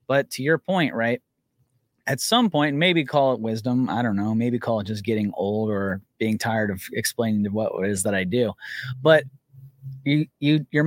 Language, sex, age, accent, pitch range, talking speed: English, male, 30-49, American, 110-145 Hz, 205 wpm